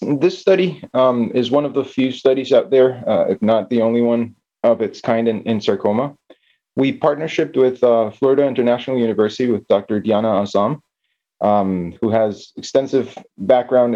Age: 30-49